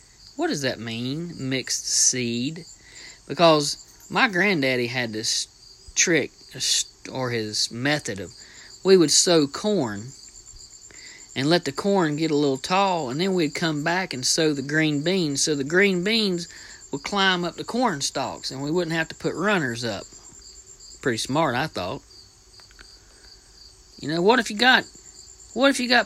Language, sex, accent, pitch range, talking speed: English, male, American, 115-185 Hz, 160 wpm